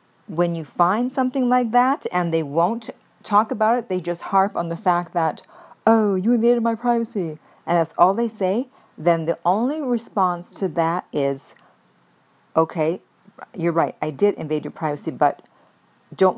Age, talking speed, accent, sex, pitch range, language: 50-69, 170 wpm, American, female, 160-195 Hz, English